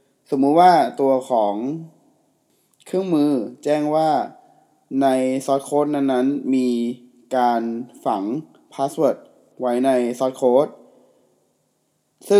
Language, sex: Thai, male